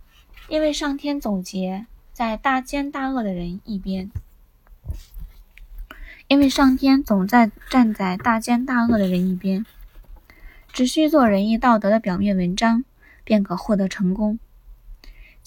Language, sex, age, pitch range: Chinese, female, 20-39, 195-250 Hz